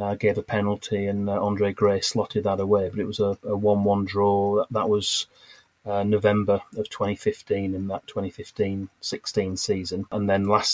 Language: English